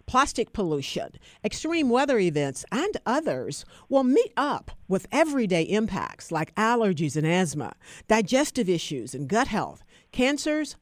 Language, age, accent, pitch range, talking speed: English, 50-69, American, 175-270 Hz, 130 wpm